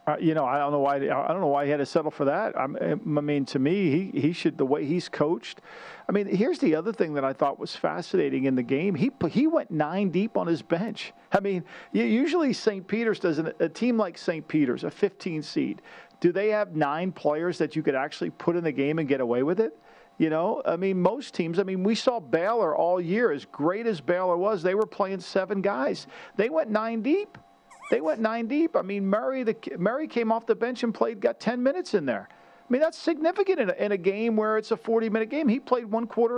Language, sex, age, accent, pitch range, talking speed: English, male, 50-69, American, 160-225 Hz, 245 wpm